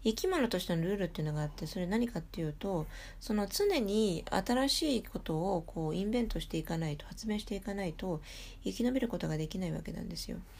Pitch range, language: 155-205 Hz, Japanese